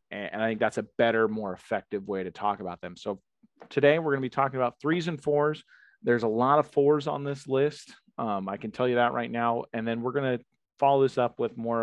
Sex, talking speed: male, 255 wpm